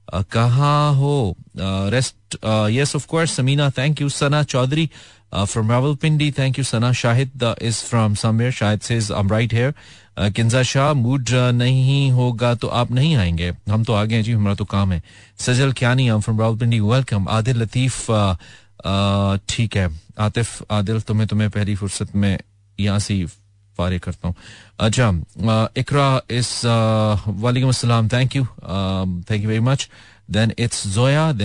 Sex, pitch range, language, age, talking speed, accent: male, 105-130 Hz, Hindi, 30-49, 110 wpm, native